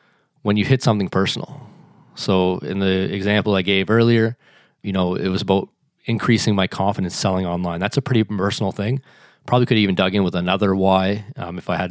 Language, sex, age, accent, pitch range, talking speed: English, male, 20-39, American, 95-110 Hz, 200 wpm